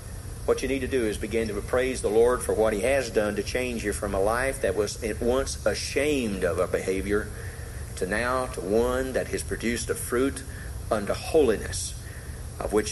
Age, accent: 40-59, American